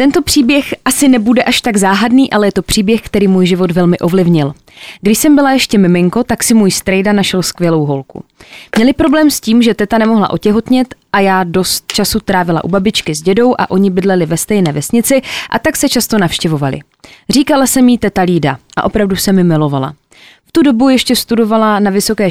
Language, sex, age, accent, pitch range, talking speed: Czech, female, 20-39, native, 180-225 Hz, 195 wpm